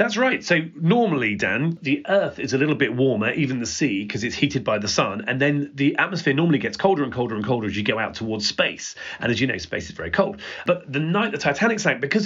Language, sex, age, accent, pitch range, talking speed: English, male, 40-59, British, 125-175 Hz, 260 wpm